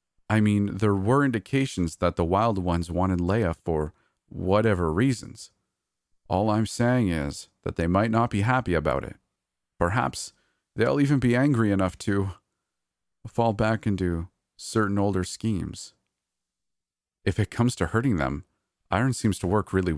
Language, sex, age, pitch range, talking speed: English, male, 40-59, 85-110 Hz, 150 wpm